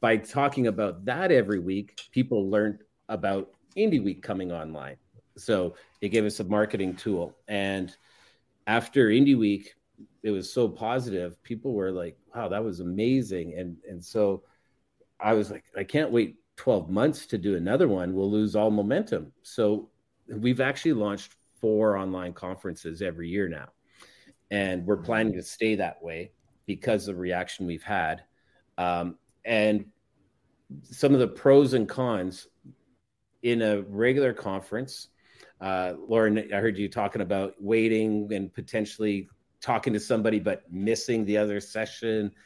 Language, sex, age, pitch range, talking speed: English, male, 40-59, 95-115 Hz, 150 wpm